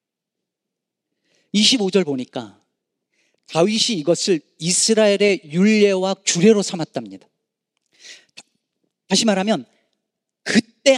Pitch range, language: 170-240 Hz, Korean